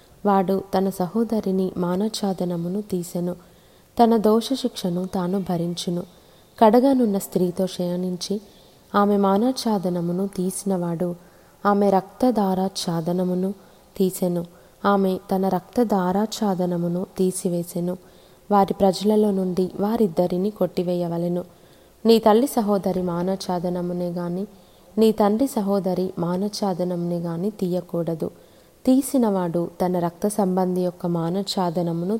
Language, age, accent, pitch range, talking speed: Telugu, 20-39, native, 180-205 Hz, 80 wpm